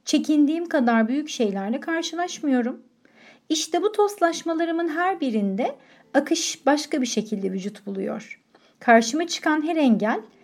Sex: female